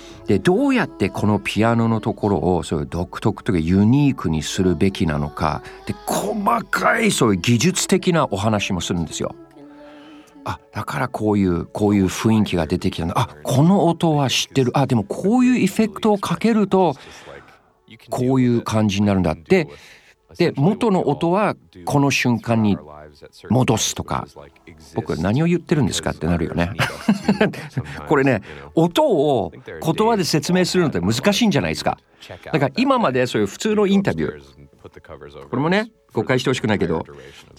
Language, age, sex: Japanese, 50-69, male